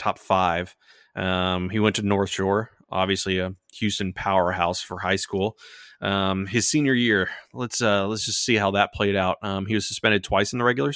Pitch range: 95-115 Hz